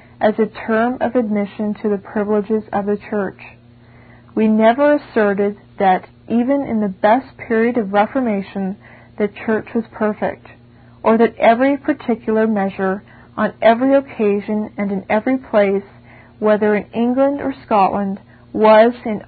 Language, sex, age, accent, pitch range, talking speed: English, female, 40-59, American, 195-225 Hz, 140 wpm